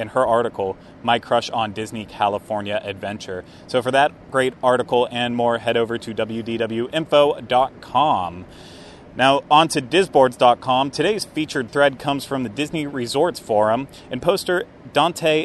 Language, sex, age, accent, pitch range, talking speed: English, male, 30-49, American, 115-145 Hz, 140 wpm